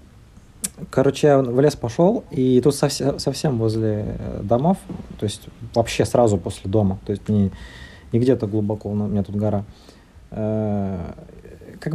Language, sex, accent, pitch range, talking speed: Russian, male, native, 105-150 Hz, 140 wpm